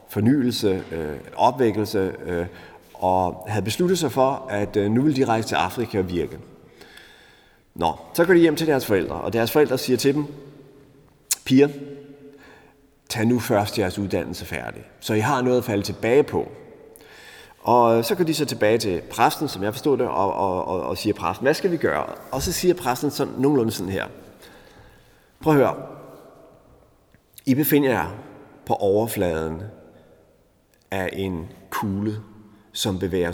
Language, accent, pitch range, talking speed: Danish, native, 100-140 Hz, 165 wpm